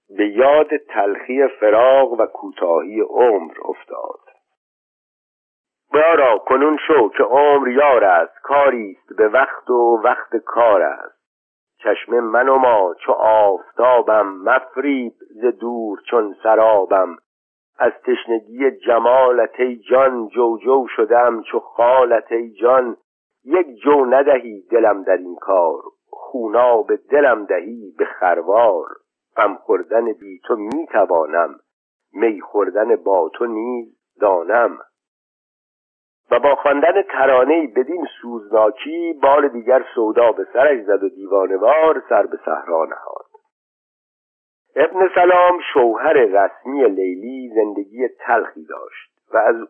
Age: 60-79